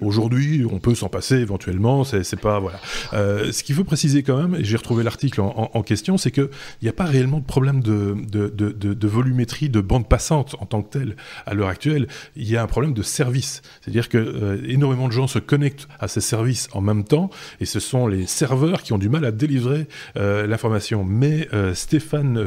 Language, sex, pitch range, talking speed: French, male, 105-140 Hz, 230 wpm